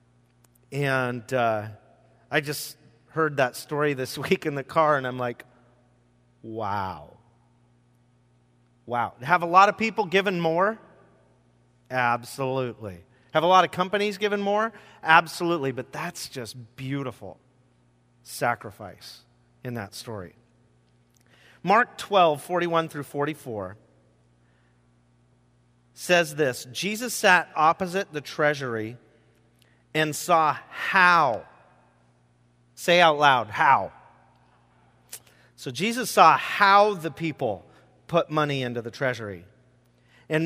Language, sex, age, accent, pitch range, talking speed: English, male, 30-49, American, 110-160 Hz, 105 wpm